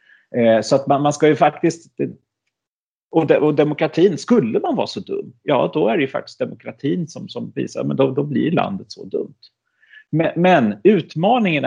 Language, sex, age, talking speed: Swedish, male, 40-59, 190 wpm